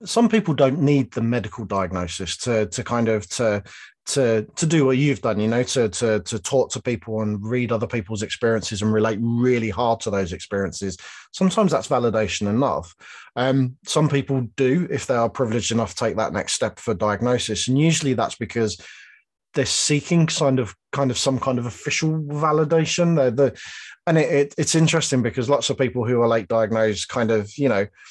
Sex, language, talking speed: male, English, 190 wpm